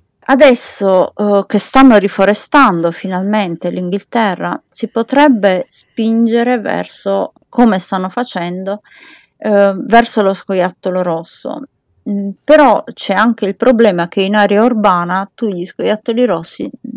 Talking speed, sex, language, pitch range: 115 wpm, female, Italian, 185-230 Hz